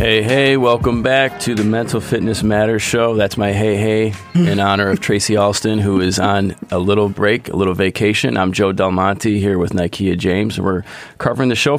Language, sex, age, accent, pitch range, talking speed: English, male, 30-49, American, 95-105 Hz, 205 wpm